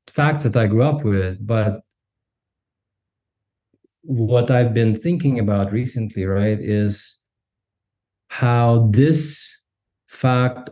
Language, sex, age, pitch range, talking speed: English, male, 30-49, 105-125 Hz, 100 wpm